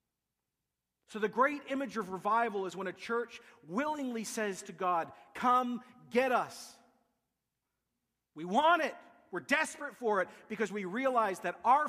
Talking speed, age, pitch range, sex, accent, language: 145 wpm, 40-59, 170-235 Hz, male, American, English